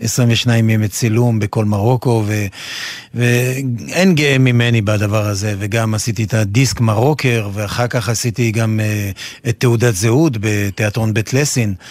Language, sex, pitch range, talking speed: Hebrew, male, 115-135 Hz, 130 wpm